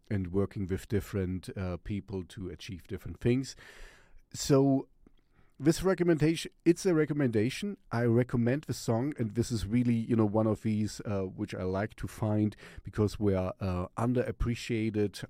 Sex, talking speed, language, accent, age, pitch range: male, 155 wpm, English, German, 40-59, 100-125 Hz